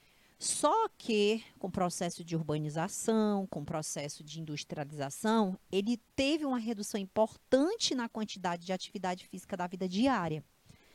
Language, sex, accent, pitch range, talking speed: Portuguese, female, Brazilian, 180-240 Hz, 135 wpm